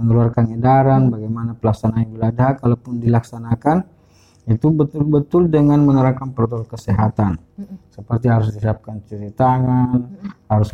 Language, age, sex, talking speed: Indonesian, 20-39, male, 110 wpm